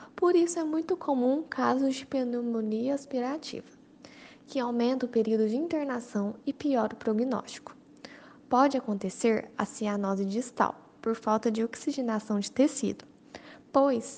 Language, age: Portuguese, 10-29